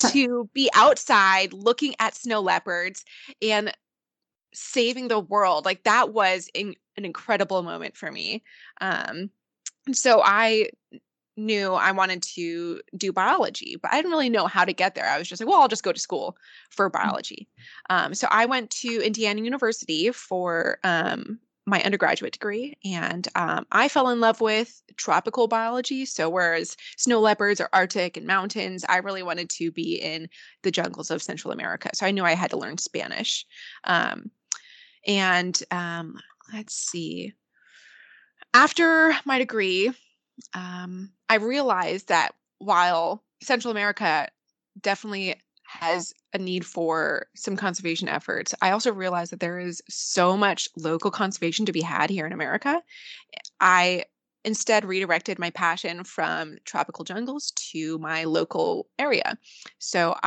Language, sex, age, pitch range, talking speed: English, female, 20-39, 180-230 Hz, 150 wpm